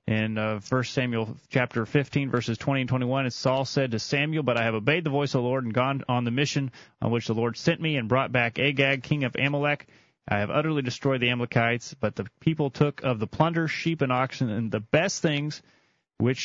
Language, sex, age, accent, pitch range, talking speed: English, male, 30-49, American, 120-145 Hz, 230 wpm